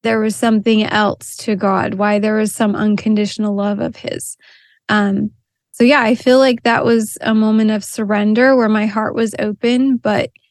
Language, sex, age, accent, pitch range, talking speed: English, female, 20-39, American, 205-230 Hz, 185 wpm